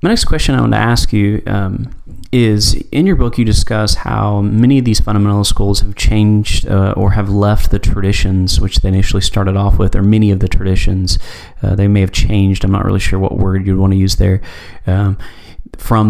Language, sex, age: English, male, 30-49